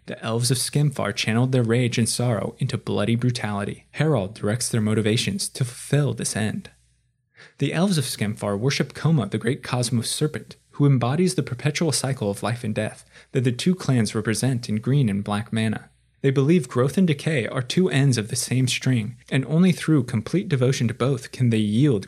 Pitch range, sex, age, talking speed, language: 110-140 Hz, male, 20-39, 195 wpm, English